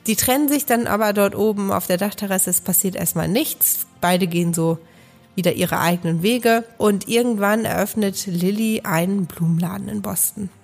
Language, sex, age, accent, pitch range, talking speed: German, female, 30-49, German, 180-230 Hz, 165 wpm